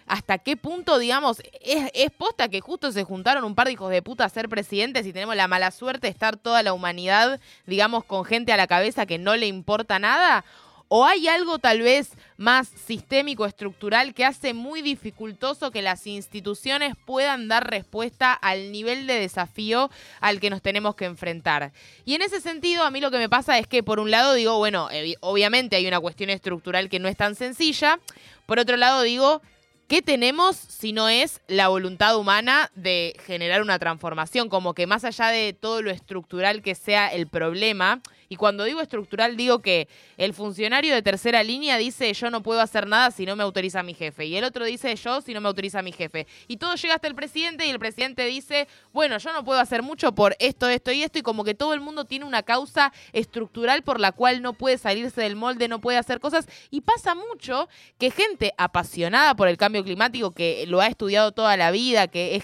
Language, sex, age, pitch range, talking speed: Spanish, female, 20-39, 195-265 Hz, 210 wpm